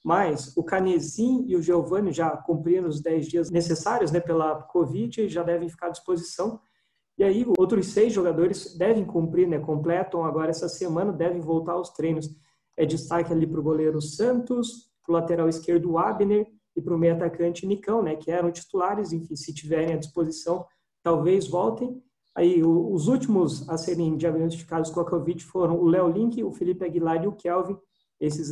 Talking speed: 185 wpm